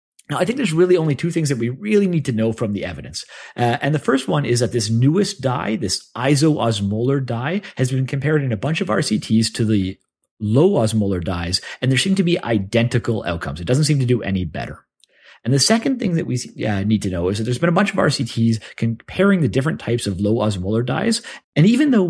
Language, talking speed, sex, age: English, 235 wpm, male, 30-49